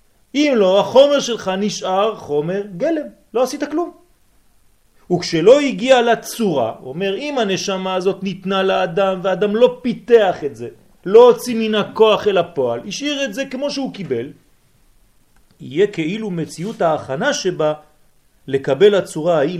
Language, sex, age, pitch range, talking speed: French, male, 40-59, 185-265 Hz, 145 wpm